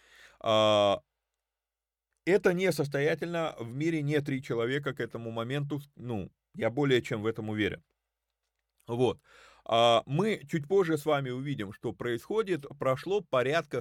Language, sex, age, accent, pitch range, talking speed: Russian, male, 30-49, native, 115-155 Hz, 120 wpm